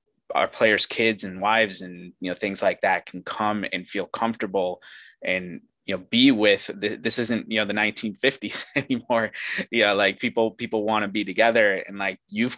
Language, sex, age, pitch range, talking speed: English, male, 20-39, 95-115 Hz, 195 wpm